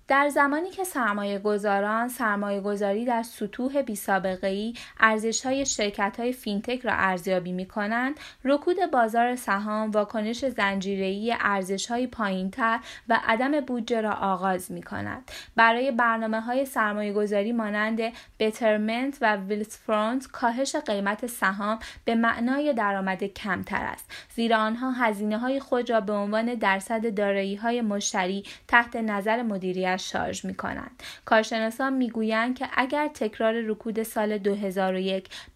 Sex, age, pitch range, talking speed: female, 10-29, 200-240 Hz, 120 wpm